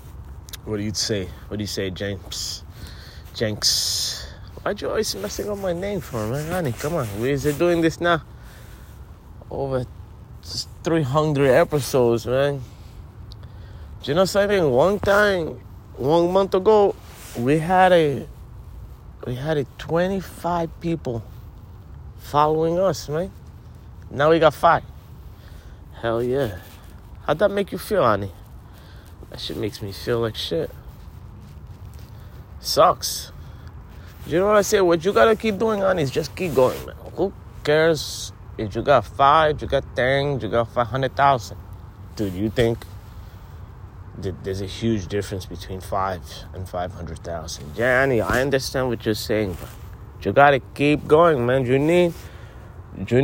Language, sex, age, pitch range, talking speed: English, male, 30-49, 95-150 Hz, 150 wpm